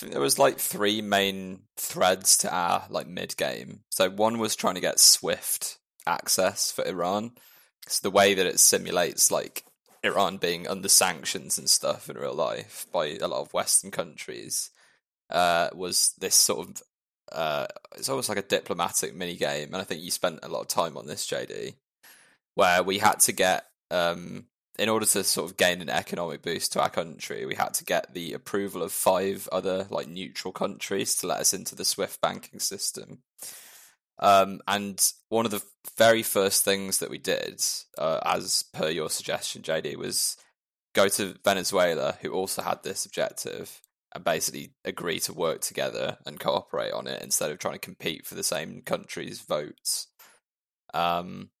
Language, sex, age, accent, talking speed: English, male, 20-39, British, 180 wpm